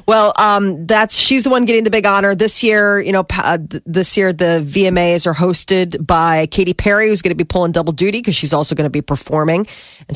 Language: English